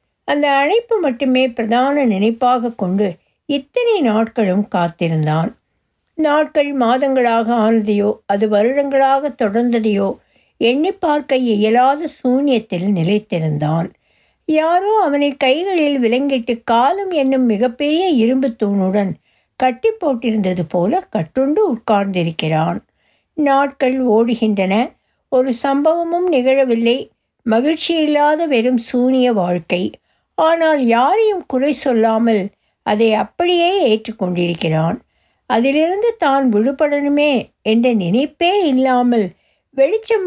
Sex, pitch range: female, 210-290 Hz